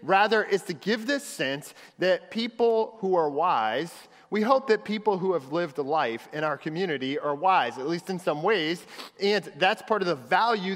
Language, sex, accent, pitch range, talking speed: English, male, American, 155-215 Hz, 195 wpm